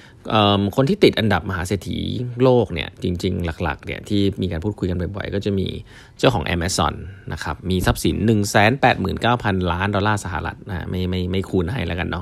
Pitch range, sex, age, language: 85-105 Hz, male, 20-39, Thai